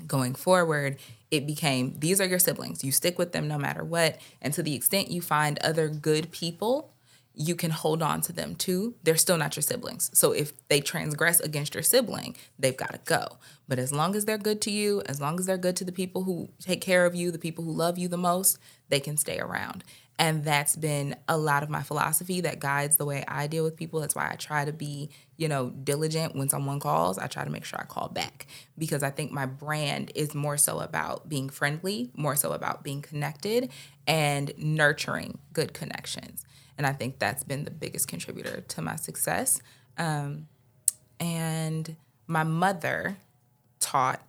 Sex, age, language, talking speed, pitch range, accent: female, 20-39, English, 205 wpm, 140-170 Hz, American